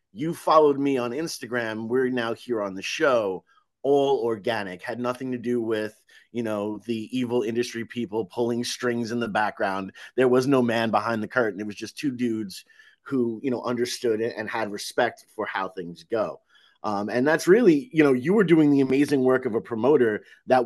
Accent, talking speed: American, 200 wpm